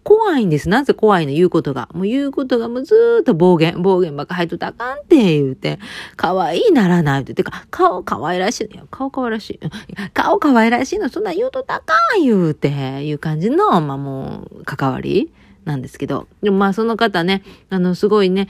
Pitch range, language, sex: 155-235 Hz, Japanese, female